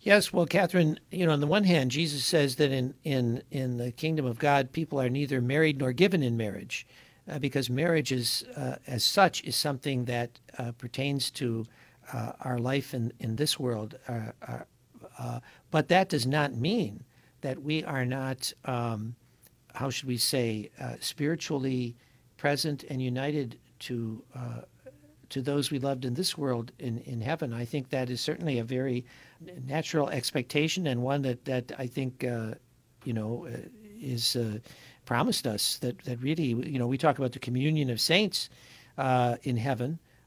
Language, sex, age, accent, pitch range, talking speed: English, male, 60-79, American, 120-150 Hz, 175 wpm